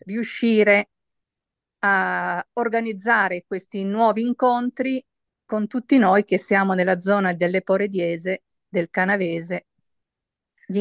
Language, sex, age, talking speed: Italian, female, 50-69, 100 wpm